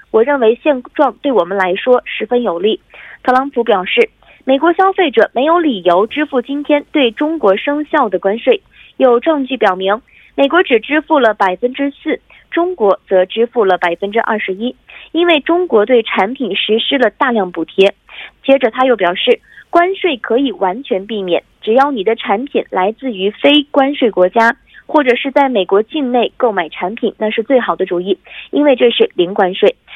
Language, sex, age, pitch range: Korean, female, 20-39, 205-290 Hz